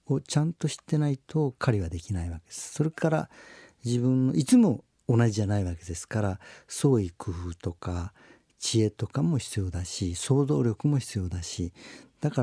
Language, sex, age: Japanese, male, 50-69